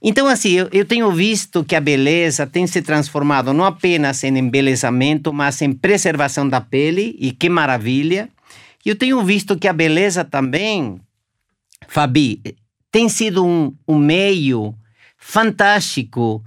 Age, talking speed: 50-69, 140 wpm